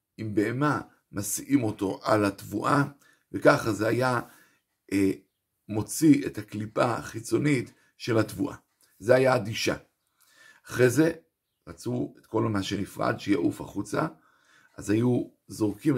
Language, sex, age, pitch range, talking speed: Hebrew, male, 50-69, 105-125 Hz, 115 wpm